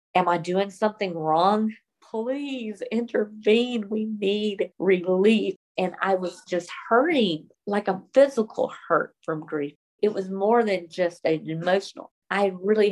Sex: female